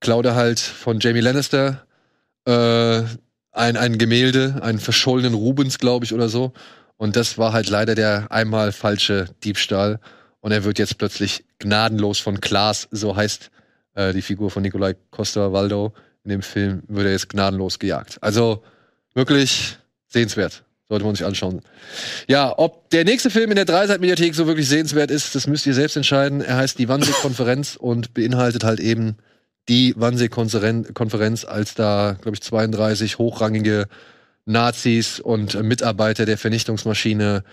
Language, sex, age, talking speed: German, male, 20-39, 150 wpm